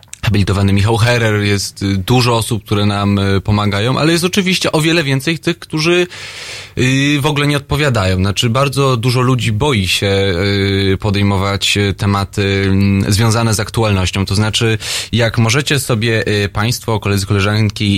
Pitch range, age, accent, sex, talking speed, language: 105-140 Hz, 20-39, native, male, 135 wpm, Polish